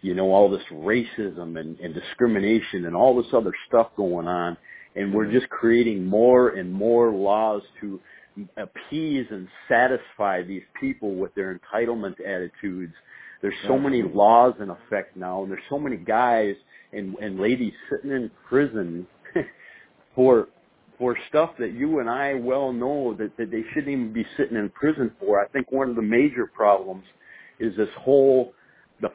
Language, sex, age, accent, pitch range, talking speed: English, male, 50-69, American, 100-135 Hz, 165 wpm